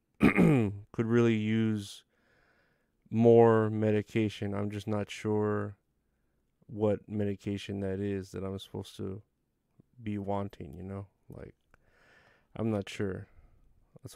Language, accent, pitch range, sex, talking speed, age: English, American, 100-115 Hz, male, 120 wpm, 30-49